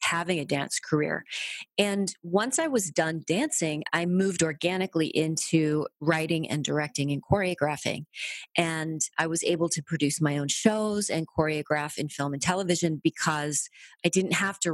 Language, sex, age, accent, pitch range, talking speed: English, female, 30-49, American, 150-185 Hz, 160 wpm